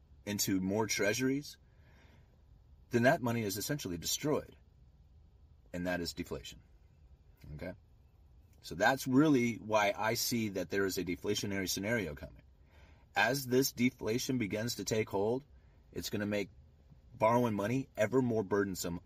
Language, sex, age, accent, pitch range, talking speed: English, male, 30-49, American, 85-120 Hz, 135 wpm